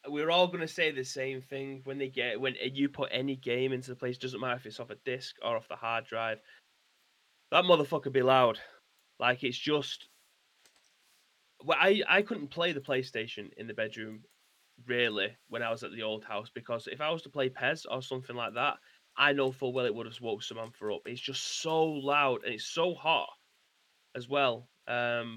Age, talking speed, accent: 20-39, 210 wpm, British